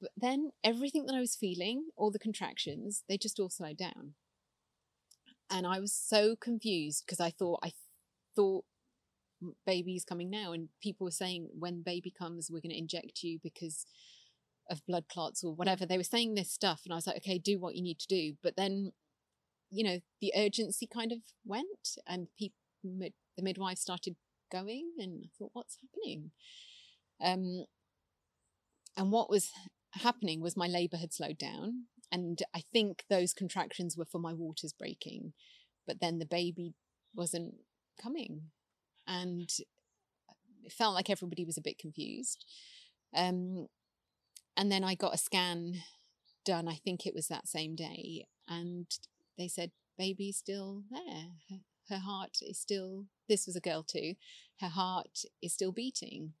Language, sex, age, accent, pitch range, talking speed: English, female, 30-49, British, 170-210 Hz, 165 wpm